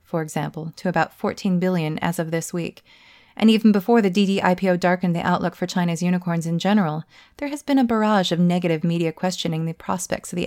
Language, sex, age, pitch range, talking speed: English, female, 20-39, 170-195 Hz, 205 wpm